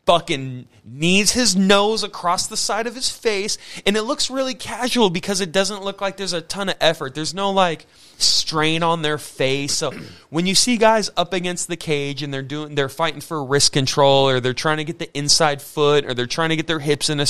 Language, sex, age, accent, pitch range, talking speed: English, male, 30-49, American, 130-195 Hz, 230 wpm